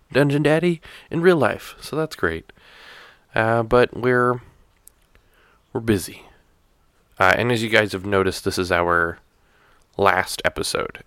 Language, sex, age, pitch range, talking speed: English, male, 20-39, 85-110 Hz, 135 wpm